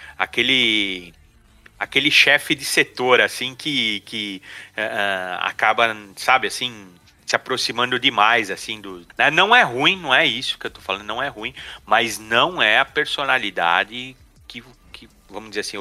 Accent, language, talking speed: Brazilian, Portuguese, 155 wpm